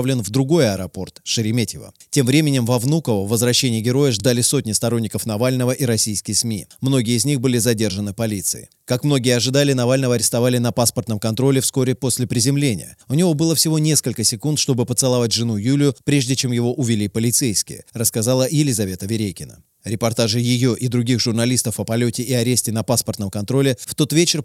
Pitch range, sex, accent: 115-135 Hz, male, native